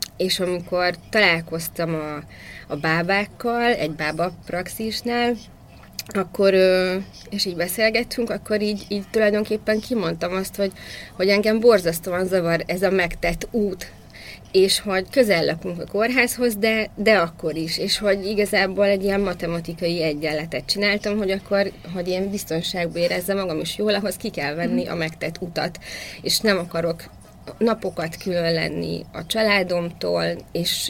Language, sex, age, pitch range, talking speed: Hungarian, female, 20-39, 165-205 Hz, 135 wpm